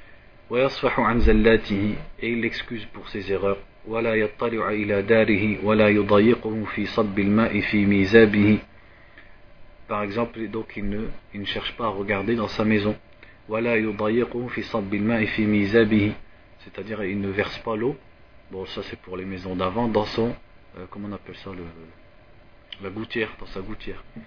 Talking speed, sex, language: 95 wpm, male, French